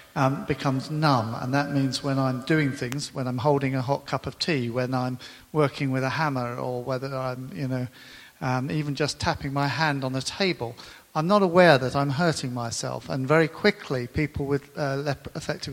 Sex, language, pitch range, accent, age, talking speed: male, English, 130-145 Hz, British, 50-69, 200 wpm